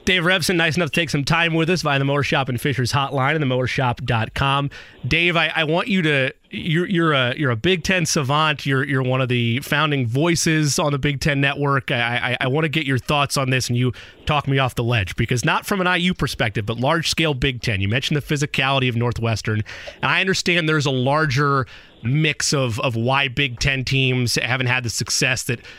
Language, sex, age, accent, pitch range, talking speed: English, male, 30-49, American, 125-160 Hz, 225 wpm